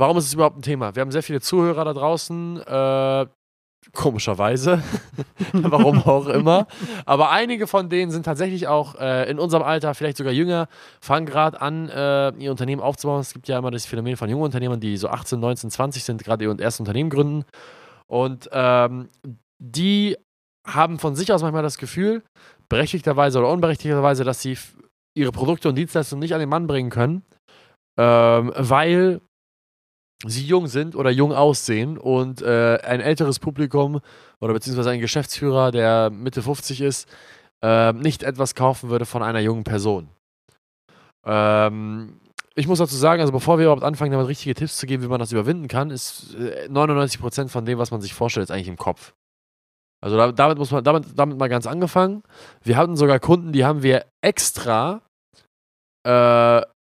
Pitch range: 120-155 Hz